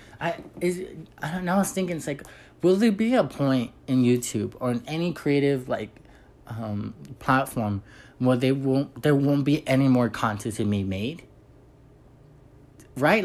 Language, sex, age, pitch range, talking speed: English, male, 20-39, 125-170 Hz, 170 wpm